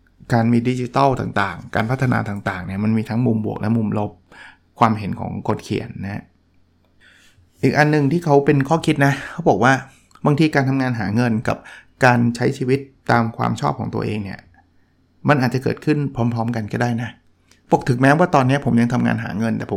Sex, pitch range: male, 100-135 Hz